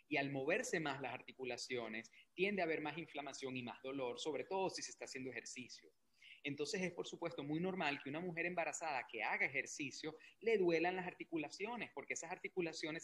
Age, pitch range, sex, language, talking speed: 30-49, 135-175 Hz, male, Spanish, 190 wpm